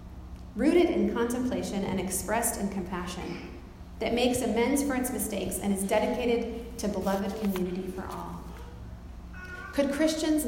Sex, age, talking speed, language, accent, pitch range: female, 30-49, 130 wpm, English, American, 195-235 Hz